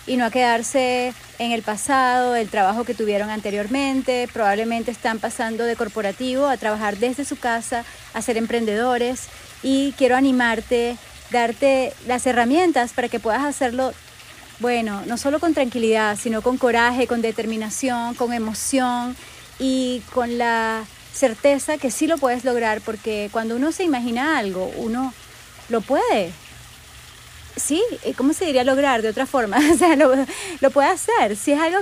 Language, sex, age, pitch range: Spanish, female, 30-49, 230-275 Hz